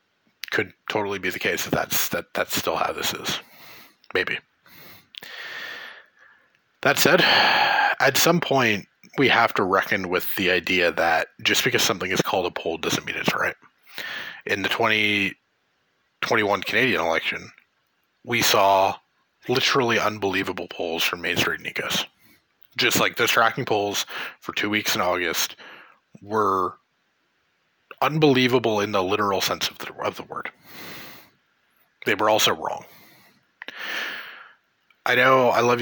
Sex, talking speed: male, 135 wpm